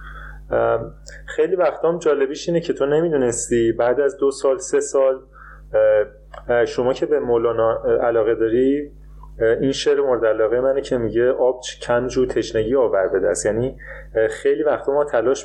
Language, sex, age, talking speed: Persian, male, 30-49, 145 wpm